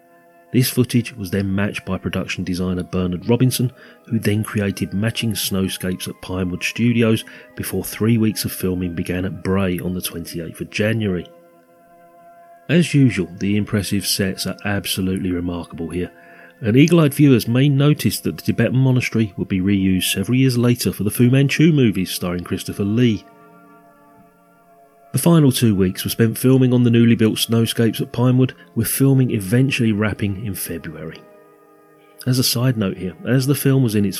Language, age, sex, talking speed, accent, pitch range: English, 30-49, male, 165 wpm, British, 95-125 Hz